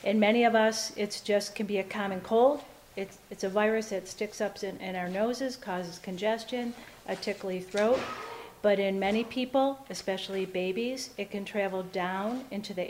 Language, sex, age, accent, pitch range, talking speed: English, female, 40-59, American, 195-225 Hz, 180 wpm